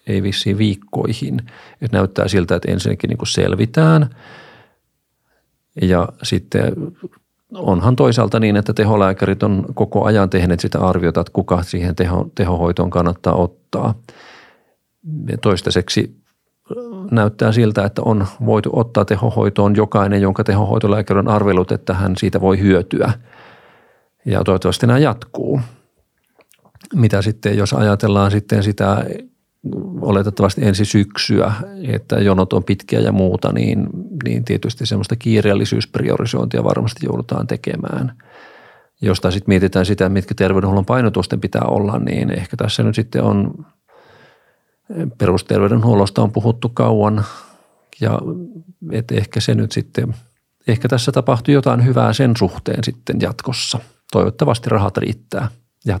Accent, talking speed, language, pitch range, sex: native, 120 wpm, Finnish, 95-115 Hz, male